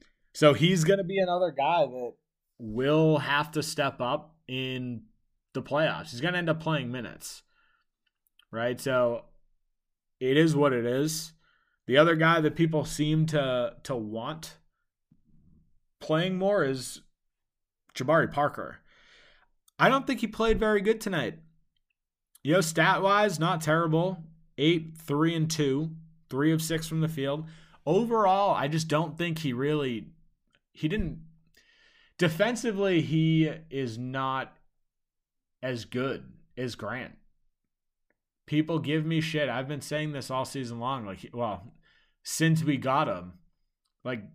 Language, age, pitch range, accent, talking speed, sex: English, 20-39, 130-165 Hz, American, 135 wpm, male